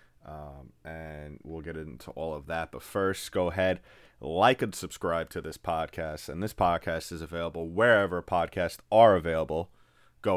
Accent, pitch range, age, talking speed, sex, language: American, 80-95 Hz, 30-49, 160 wpm, male, English